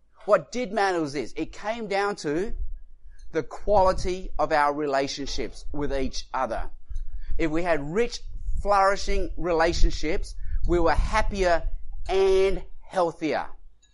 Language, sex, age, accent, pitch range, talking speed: English, male, 30-49, Australian, 150-200 Hz, 120 wpm